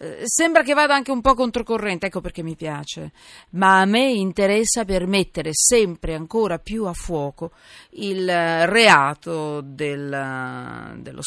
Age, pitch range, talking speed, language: 40-59, 150-210 Hz, 140 wpm, Italian